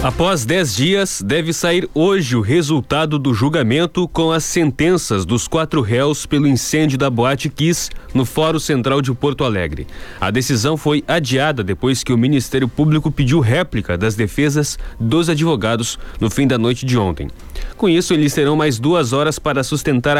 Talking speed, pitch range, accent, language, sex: 170 wpm, 125-160 Hz, Brazilian, Portuguese, male